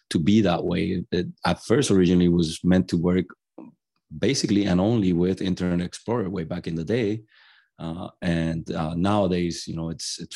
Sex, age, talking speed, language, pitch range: male, 30-49, 180 wpm, English, 85-100 Hz